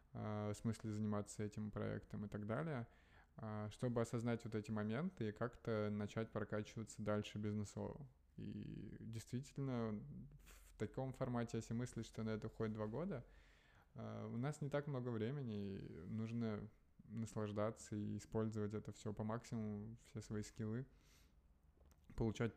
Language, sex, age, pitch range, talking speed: Russian, male, 20-39, 105-115 Hz, 135 wpm